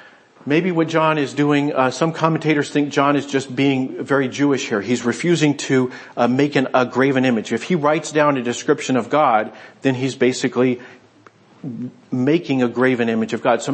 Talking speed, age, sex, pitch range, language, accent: 185 wpm, 40-59, male, 125-155 Hz, English, American